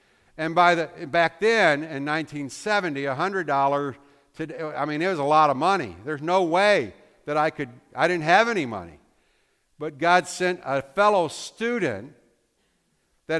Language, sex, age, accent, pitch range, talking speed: English, male, 60-79, American, 145-195 Hz, 155 wpm